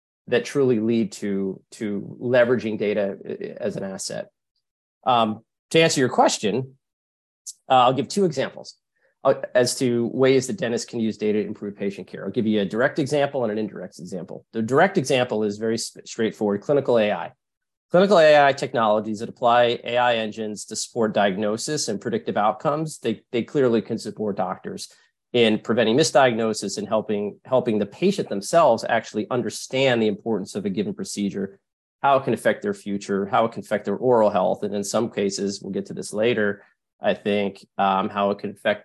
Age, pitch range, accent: 30-49, 105-130 Hz, American